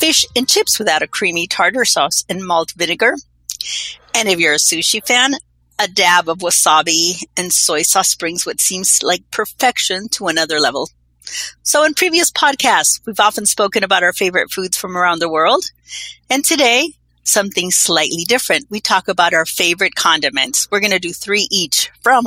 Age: 40-59